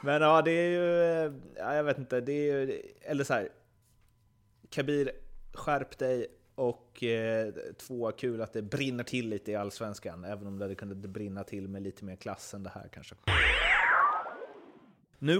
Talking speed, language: 175 wpm, Swedish